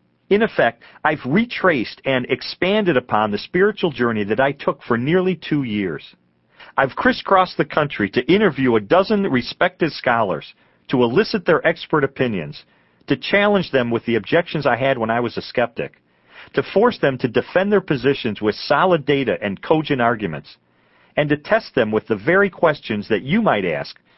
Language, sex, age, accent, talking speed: English, male, 40-59, American, 175 wpm